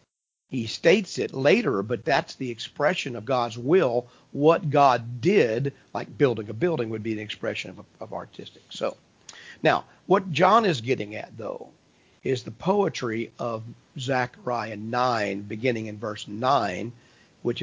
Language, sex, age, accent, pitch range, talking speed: English, male, 50-69, American, 115-135 Hz, 150 wpm